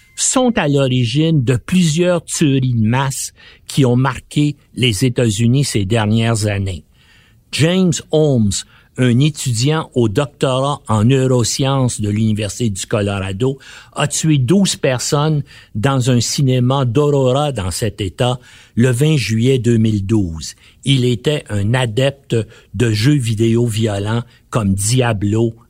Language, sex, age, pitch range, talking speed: French, male, 60-79, 115-150 Hz, 125 wpm